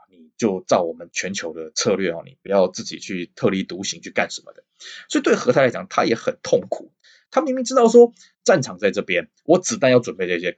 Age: 20-39